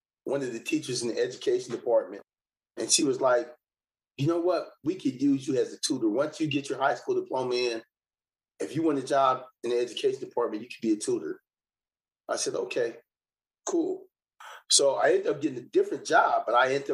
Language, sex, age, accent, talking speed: English, male, 30-49, American, 210 wpm